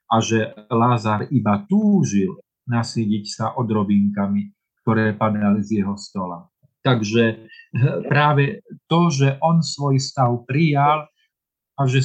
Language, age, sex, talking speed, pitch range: Slovak, 40-59, male, 115 wpm, 115-140 Hz